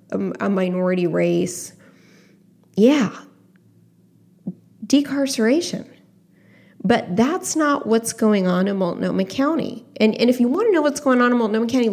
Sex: female